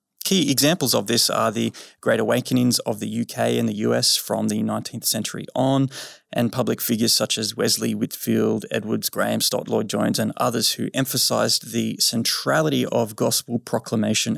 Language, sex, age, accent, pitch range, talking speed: English, male, 20-39, Australian, 115-140 Hz, 165 wpm